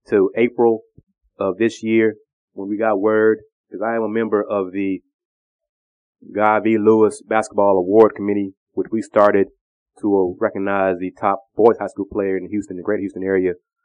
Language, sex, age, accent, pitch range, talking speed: English, male, 20-39, American, 95-110 Hz, 175 wpm